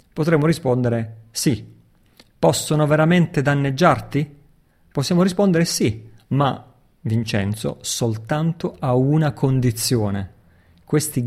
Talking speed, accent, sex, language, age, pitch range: 85 wpm, native, male, Italian, 40-59, 115-150 Hz